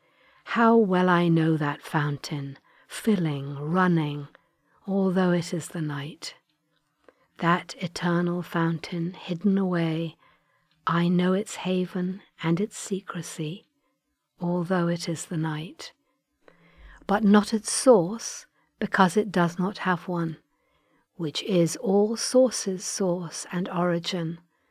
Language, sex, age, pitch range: English, female, 60-79, 165-200 Hz